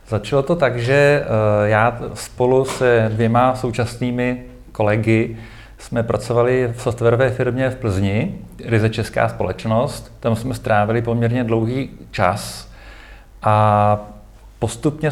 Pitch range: 110-130 Hz